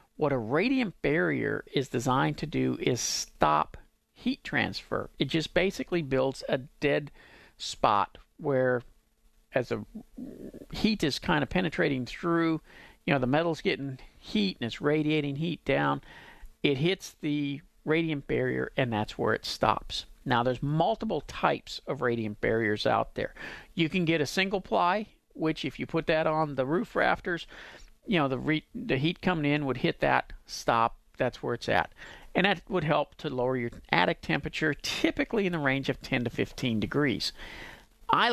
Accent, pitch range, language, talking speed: American, 130-170 Hz, English, 170 wpm